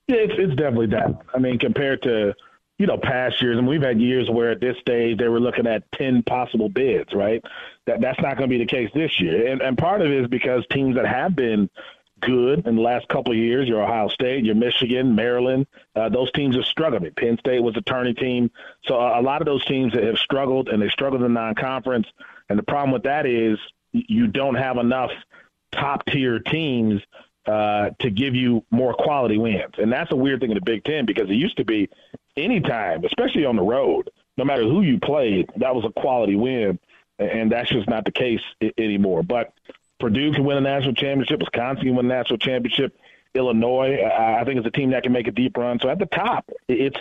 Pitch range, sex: 115-135 Hz, male